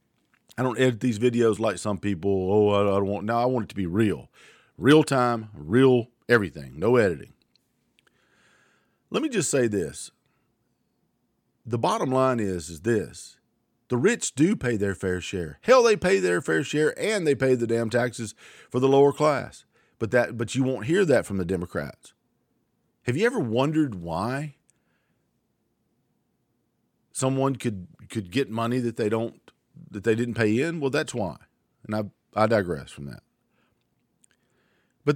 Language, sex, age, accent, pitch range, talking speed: English, male, 50-69, American, 100-130 Hz, 165 wpm